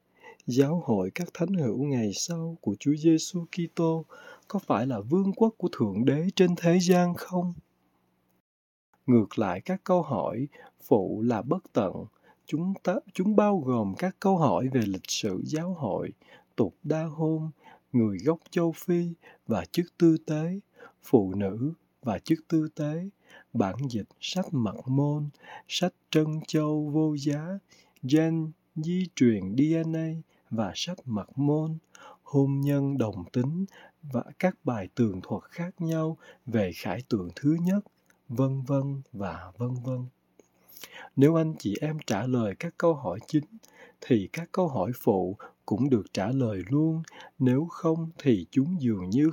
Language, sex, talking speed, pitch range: Vietnamese, male, 155 wpm, 125-170 Hz